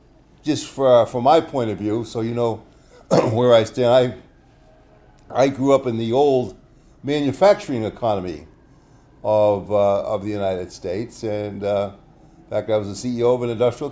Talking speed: 170 wpm